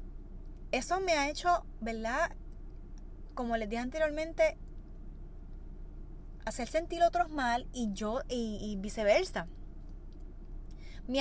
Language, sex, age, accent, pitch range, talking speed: Spanish, female, 20-39, American, 190-285 Hz, 100 wpm